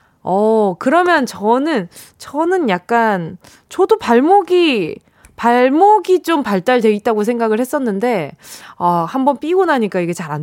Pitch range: 185-285 Hz